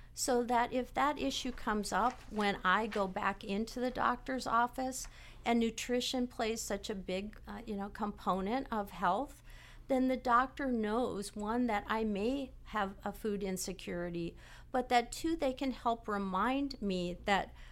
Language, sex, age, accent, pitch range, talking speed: English, female, 50-69, American, 195-245 Hz, 165 wpm